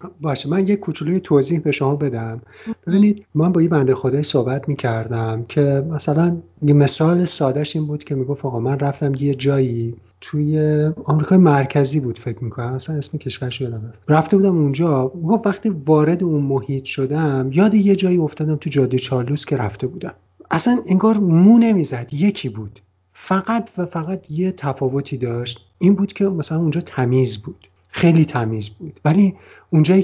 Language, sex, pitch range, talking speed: Persian, male, 130-170 Hz, 170 wpm